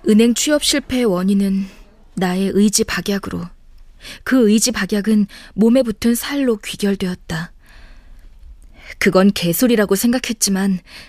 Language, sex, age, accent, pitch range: Korean, female, 20-39, native, 180-240 Hz